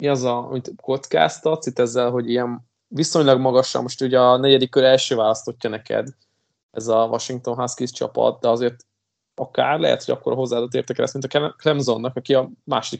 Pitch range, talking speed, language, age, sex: 120-135 Hz, 180 wpm, Hungarian, 20-39, male